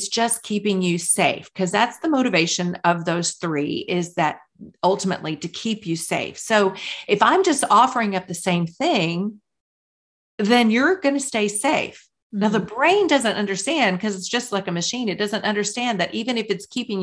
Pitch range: 180-230 Hz